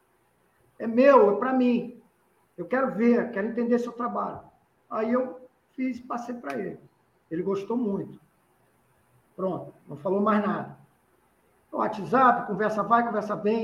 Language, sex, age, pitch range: Portuguese, male, 50-69, 215-275 Hz